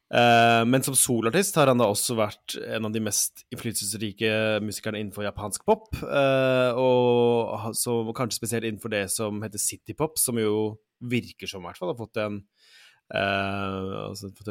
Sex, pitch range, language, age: male, 105-120 Hz, English, 20-39